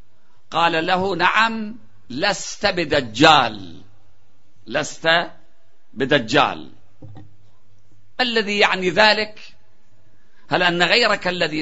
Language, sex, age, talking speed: Arabic, male, 50-69, 70 wpm